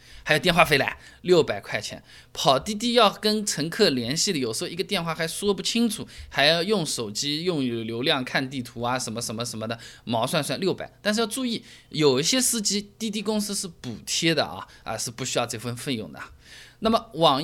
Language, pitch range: Chinese, 120-190 Hz